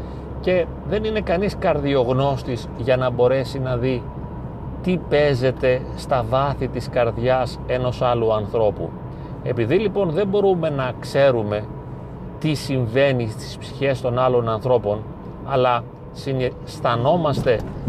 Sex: male